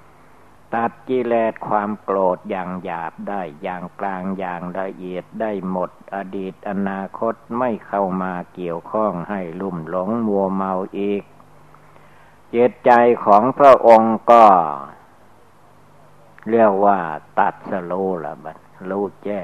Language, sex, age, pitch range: Thai, male, 60-79, 95-110 Hz